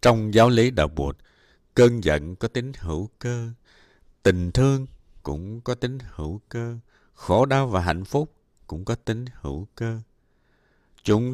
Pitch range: 85-120 Hz